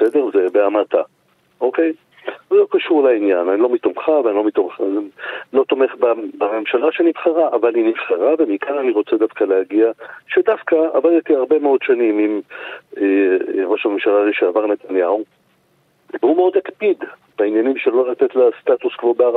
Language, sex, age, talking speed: Hebrew, male, 50-69, 145 wpm